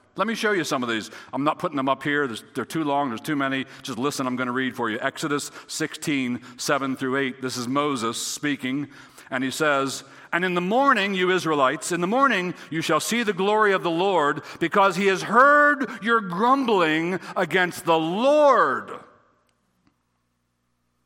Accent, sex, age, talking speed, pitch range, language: American, male, 60-79, 185 wpm, 110-180 Hz, English